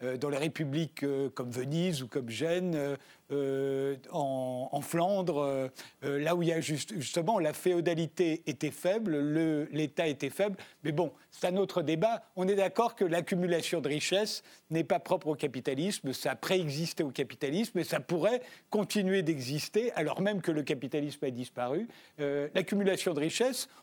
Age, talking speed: 50-69, 165 wpm